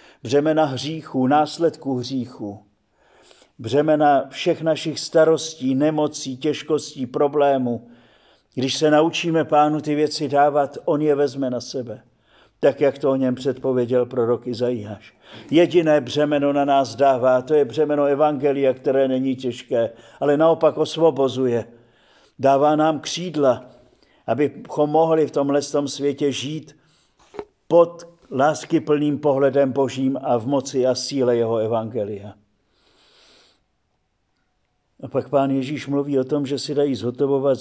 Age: 50-69